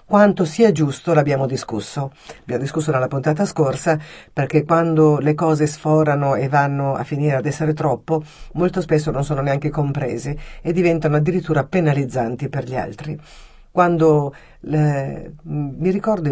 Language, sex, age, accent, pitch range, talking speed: Italian, female, 50-69, native, 140-165 Hz, 140 wpm